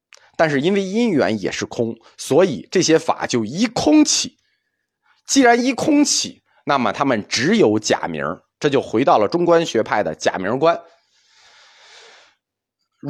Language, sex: Chinese, male